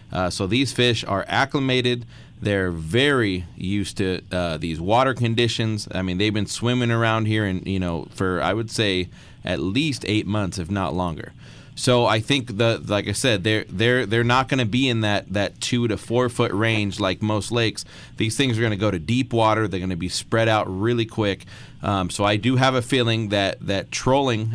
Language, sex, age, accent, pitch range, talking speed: English, male, 30-49, American, 100-125 Hz, 215 wpm